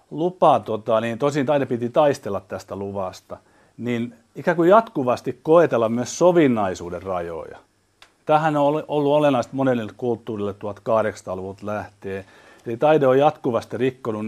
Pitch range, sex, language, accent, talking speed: 105-135 Hz, male, Finnish, native, 120 wpm